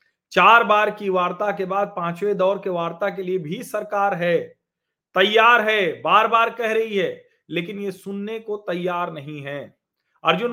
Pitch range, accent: 165-215 Hz, native